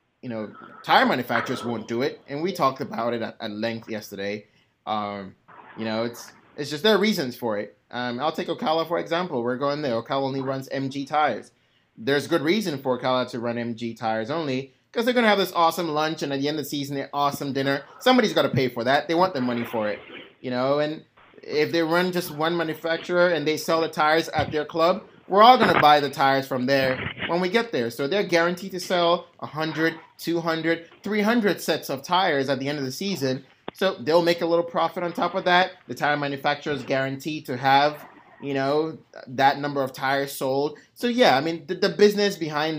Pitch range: 130-170 Hz